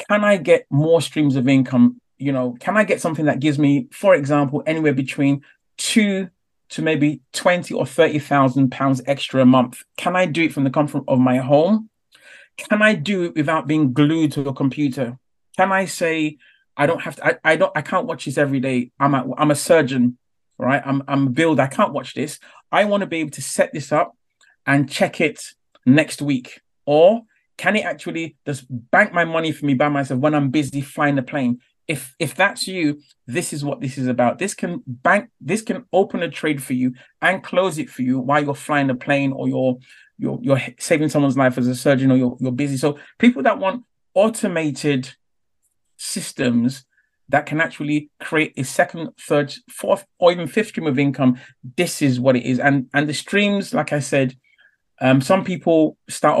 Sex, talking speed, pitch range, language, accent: male, 205 wpm, 135-170 Hz, English, British